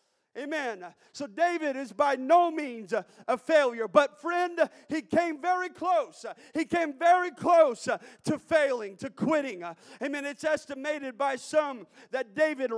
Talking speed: 140 wpm